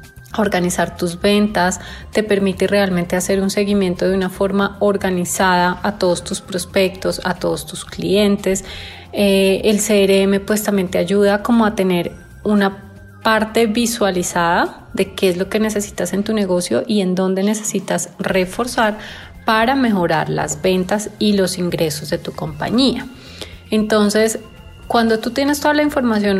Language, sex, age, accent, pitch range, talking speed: Spanish, female, 30-49, Colombian, 185-220 Hz, 150 wpm